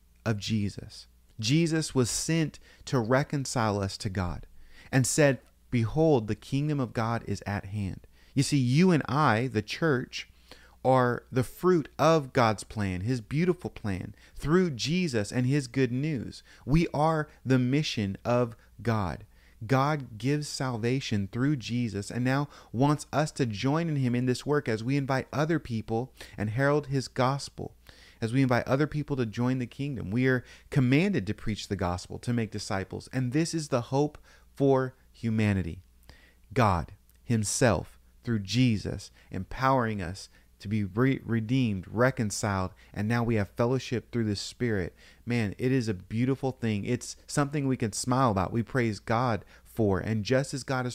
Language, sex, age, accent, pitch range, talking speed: English, male, 30-49, American, 105-135 Hz, 160 wpm